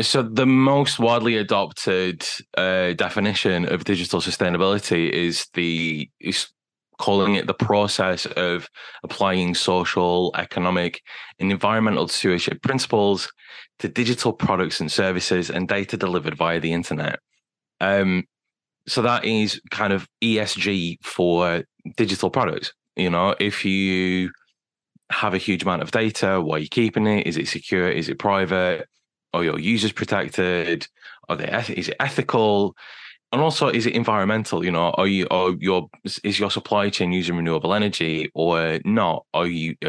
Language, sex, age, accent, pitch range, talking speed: English, male, 20-39, British, 90-110 Hz, 150 wpm